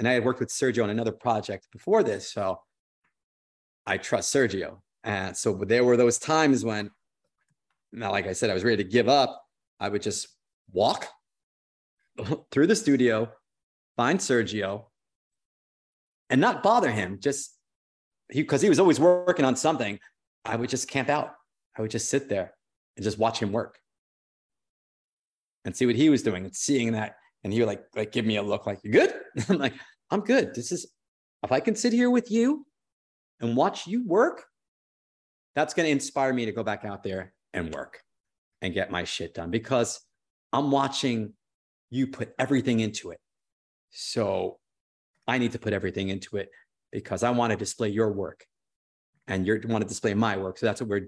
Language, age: English, 30-49